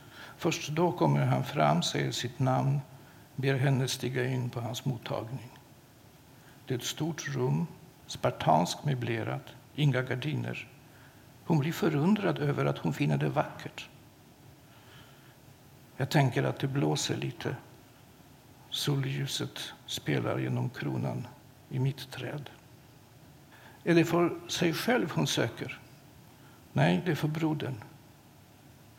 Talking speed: 120 wpm